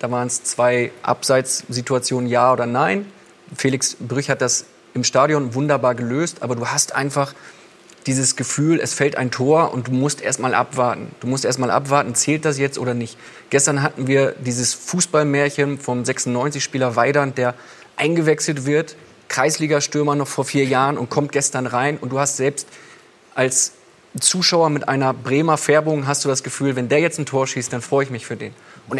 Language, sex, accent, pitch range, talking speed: German, male, German, 130-155 Hz, 180 wpm